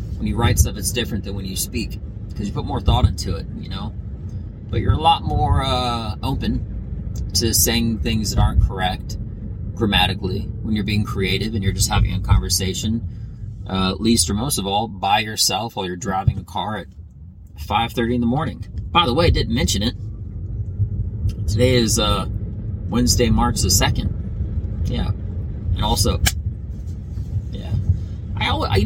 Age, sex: 30-49, male